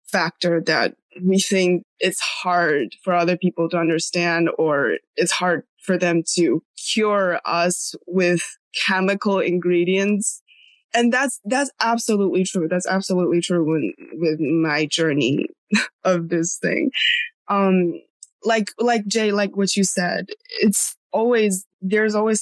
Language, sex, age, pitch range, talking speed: English, female, 20-39, 170-205 Hz, 130 wpm